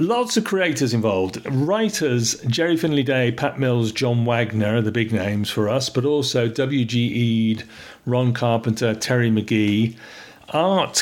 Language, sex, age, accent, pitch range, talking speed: English, male, 50-69, British, 115-140 Hz, 140 wpm